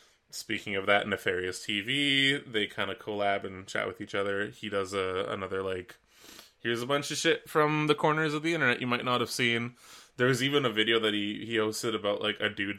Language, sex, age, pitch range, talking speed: English, male, 20-39, 95-120 Hz, 220 wpm